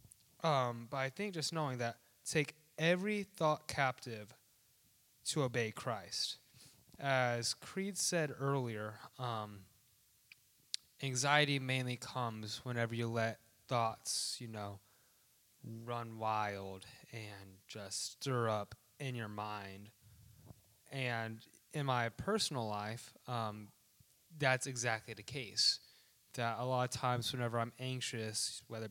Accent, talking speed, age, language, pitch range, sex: American, 115 wpm, 20-39, English, 110-130 Hz, male